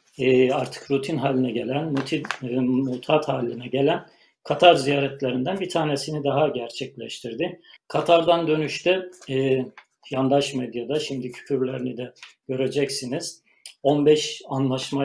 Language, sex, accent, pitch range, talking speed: Turkish, male, native, 130-150 Hz, 110 wpm